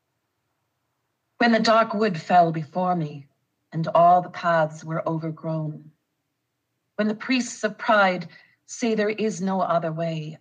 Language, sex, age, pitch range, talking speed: English, female, 40-59, 145-190 Hz, 140 wpm